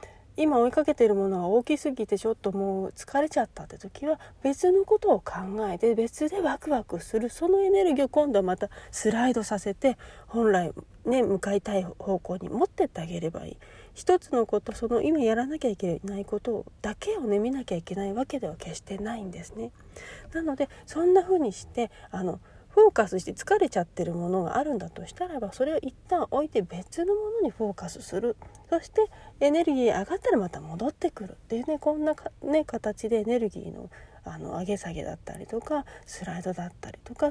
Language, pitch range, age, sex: Japanese, 200-310 Hz, 40-59, female